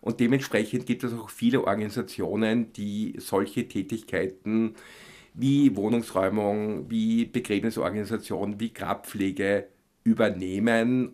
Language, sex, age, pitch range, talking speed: German, male, 50-69, 100-115 Hz, 90 wpm